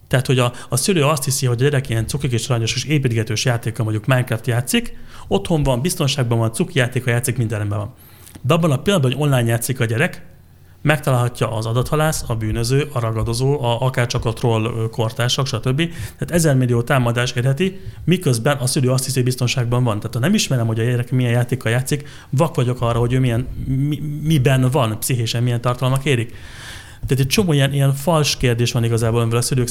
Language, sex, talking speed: Hungarian, male, 195 wpm